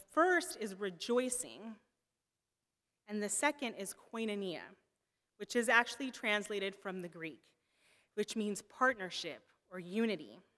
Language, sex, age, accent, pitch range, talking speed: English, female, 30-49, American, 180-225 Hz, 120 wpm